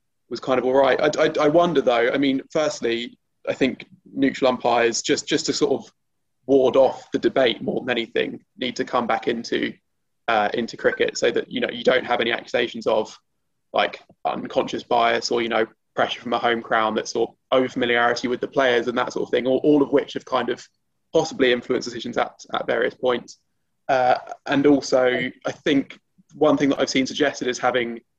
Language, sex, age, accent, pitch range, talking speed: English, male, 20-39, British, 115-135 Hz, 210 wpm